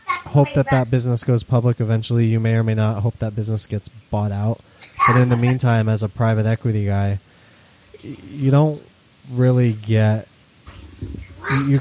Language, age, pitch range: English, 20-39, 105-120 Hz